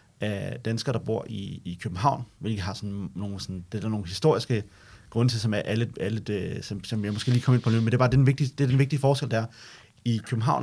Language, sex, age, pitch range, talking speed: Danish, male, 30-49, 105-125 Hz, 270 wpm